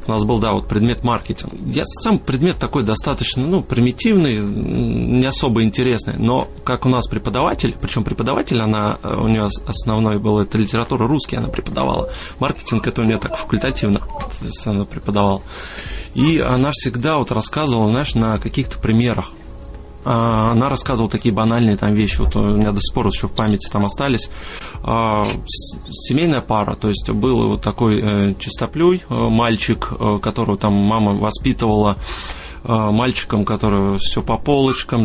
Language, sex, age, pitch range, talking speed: Russian, male, 20-39, 105-125 Hz, 145 wpm